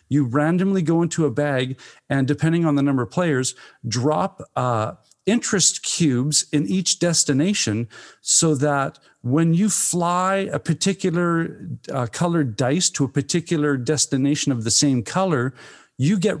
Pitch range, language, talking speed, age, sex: 120-160 Hz, English, 145 wpm, 50-69, male